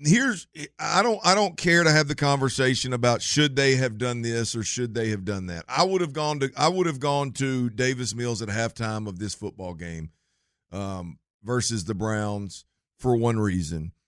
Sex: male